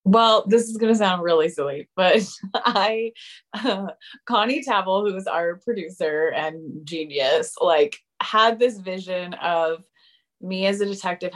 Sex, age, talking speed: female, 20-39, 150 wpm